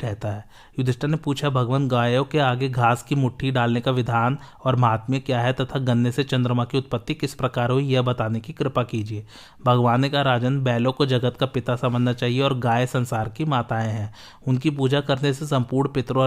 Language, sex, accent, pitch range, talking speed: Hindi, male, native, 120-135 Hz, 130 wpm